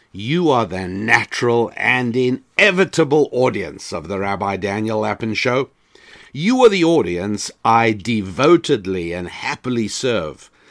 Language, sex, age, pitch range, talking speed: English, male, 60-79, 110-145 Hz, 125 wpm